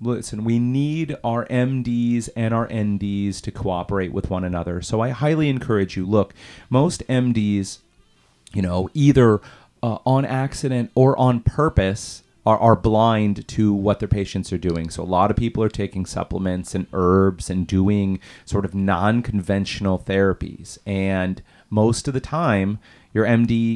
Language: English